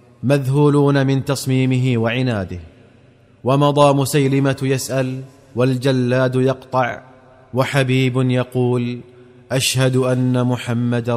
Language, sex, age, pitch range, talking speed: Arabic, male, 30-49, 120-135 Hz, 75 wpm